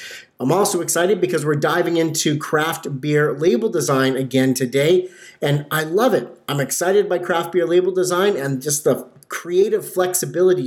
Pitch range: 140-185 Hz